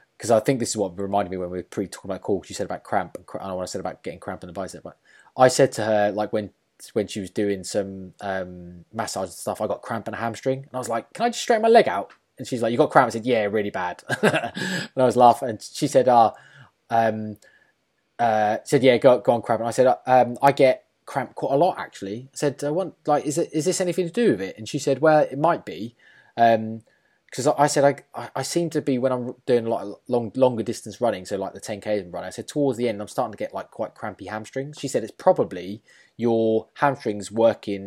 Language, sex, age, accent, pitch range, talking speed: English, male, 20-39, British, 100-130 Hz, 275 wpm